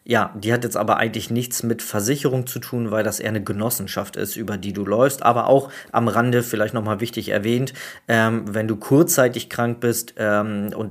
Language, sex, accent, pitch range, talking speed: German, male, German, 110-140 Hz, 205 wpm